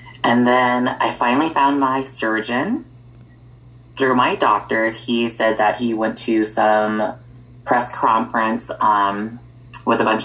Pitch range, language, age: 110-125 Hz, English, 20-39